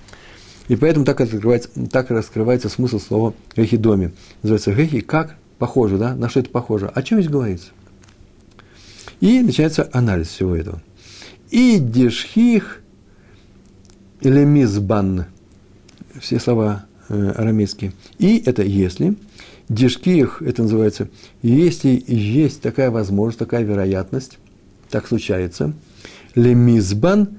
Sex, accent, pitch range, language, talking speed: male, native, 100-125 Hz, Russian, 105 wpm